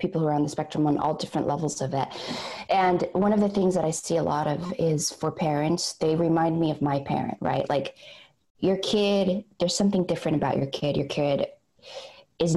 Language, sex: English, female